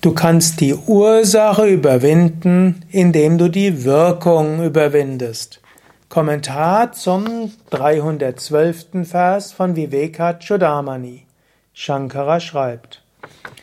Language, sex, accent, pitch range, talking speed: German, male, German, 150-190 Hz, 85 wpm